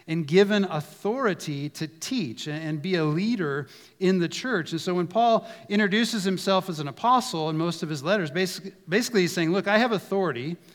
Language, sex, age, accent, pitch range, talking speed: English, male, 40-59, American, 145-190 Hz, 190 wpm